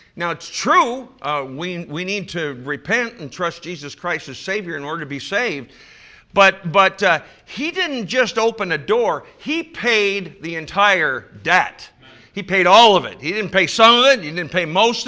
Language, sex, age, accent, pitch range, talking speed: English, male, 50-69, American, 145-220 Hz, 195 wpm